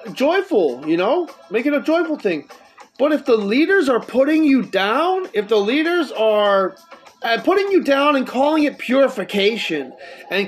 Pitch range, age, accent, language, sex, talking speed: 210-310 Hz, 30-49, American, English, male, 160 wpm